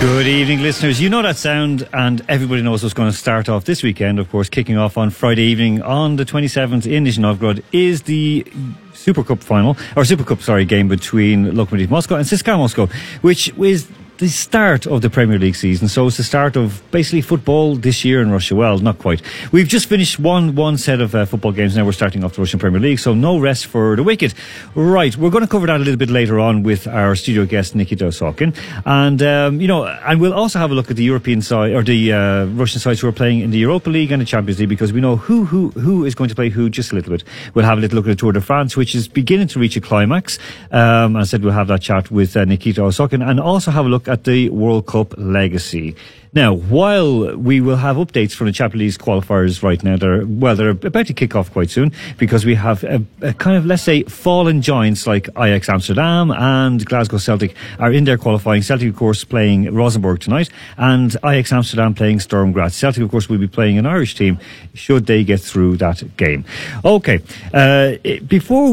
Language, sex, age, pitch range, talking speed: English, male, 40-59, 105-145 Hz, 230 wpm